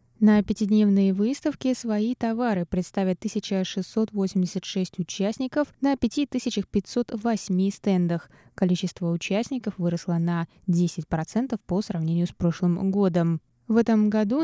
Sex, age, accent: female, 20-39, native